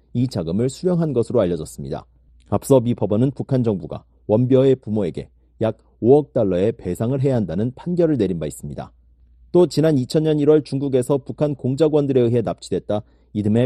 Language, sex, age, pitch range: Korean, male, 40-59, 105-145 Hz